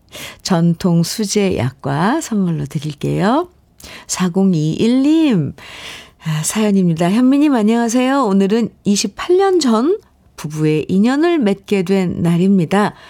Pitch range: 175-245 Hz